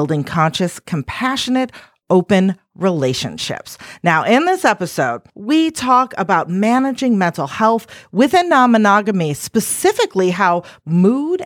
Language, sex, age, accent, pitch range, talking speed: English, female, 40-59, American, 155-245 Hz, 105 wpm